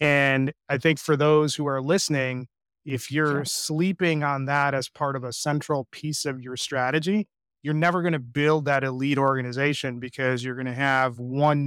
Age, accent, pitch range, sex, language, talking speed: 30-49, American, 140-165 Hz, male, English, 175 wpm